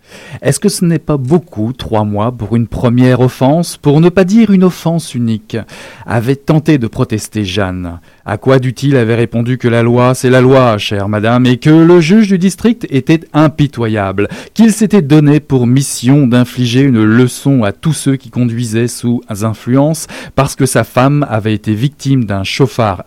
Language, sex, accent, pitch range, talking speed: French, male, French, 105-140 Hz, 180 wpm